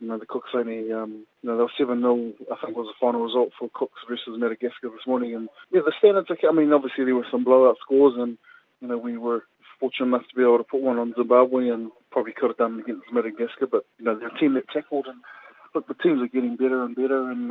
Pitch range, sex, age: 115-130 Hz, male, 20-39